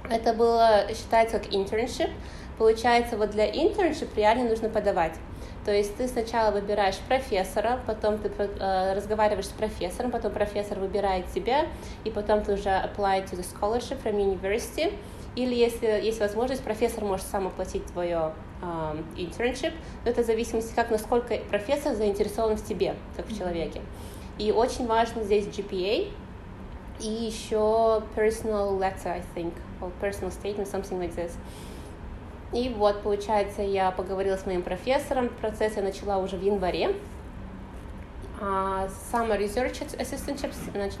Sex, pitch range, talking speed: female, 195-225 Hz, 140 wpm